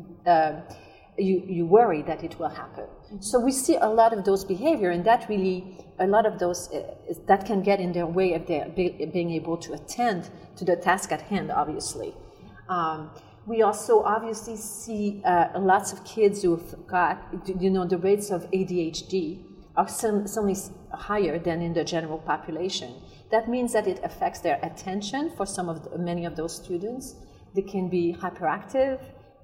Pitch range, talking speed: 175-210 Hz, 185 wpm